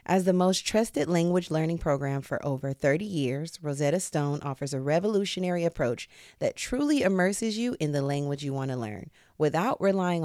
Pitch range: 145-190 Hz